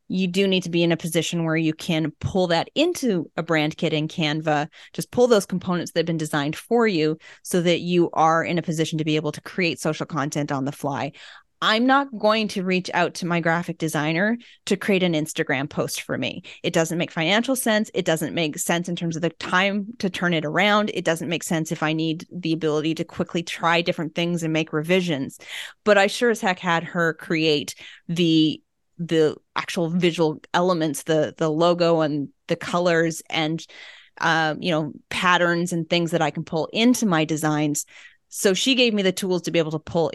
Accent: American